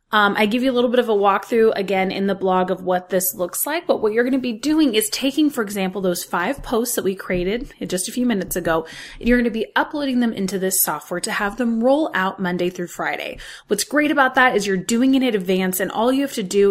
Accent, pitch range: American, 185-250 Hz